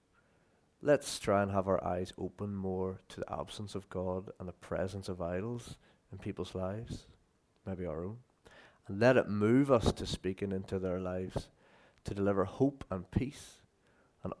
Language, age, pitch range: English, 30-49, 95-110 Hz